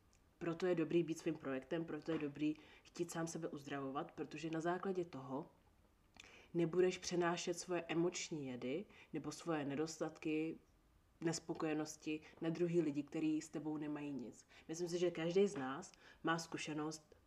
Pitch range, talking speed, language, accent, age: 145-165 Hz, 145 wpm, Czech, native, 30-49